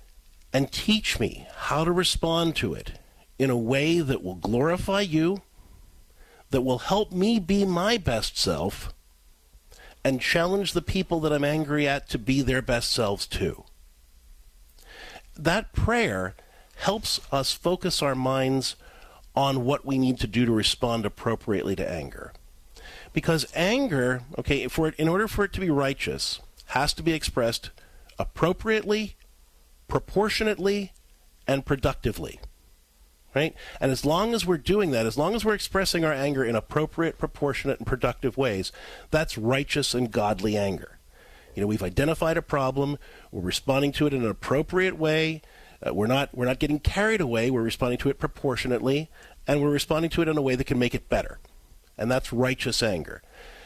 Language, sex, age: English, male, 50-69